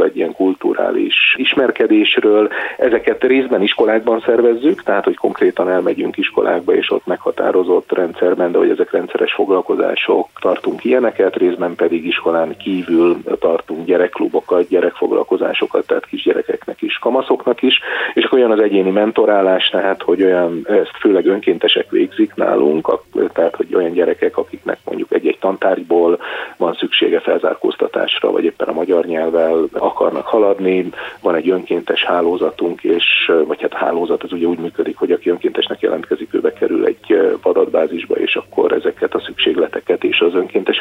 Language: Hungarian